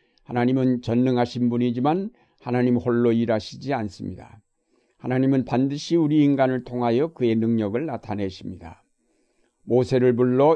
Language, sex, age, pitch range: Korean, male, 60-79, 115-140 Hz